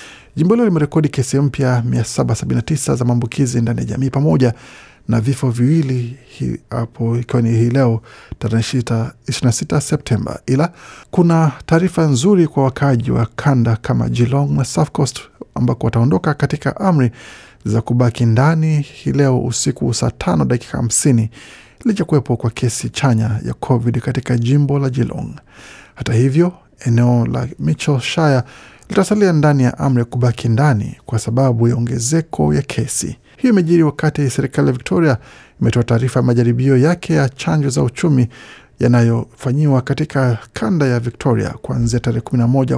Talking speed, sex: 135 wpm, male